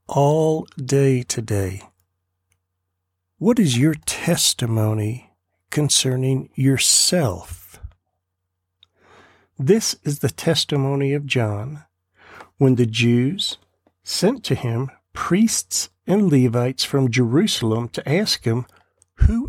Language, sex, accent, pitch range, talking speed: English, male, American, 95-145 Hz, 90 wpm